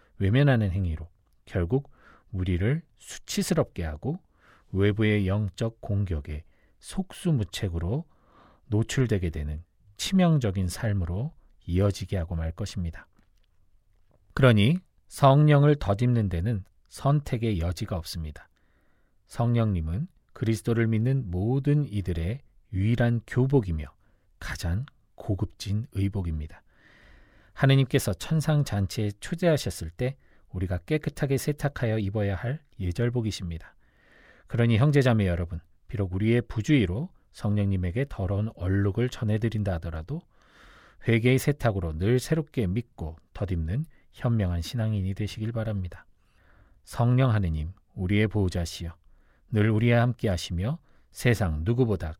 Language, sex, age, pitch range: Korean, male, 40-59, 90-125 Hz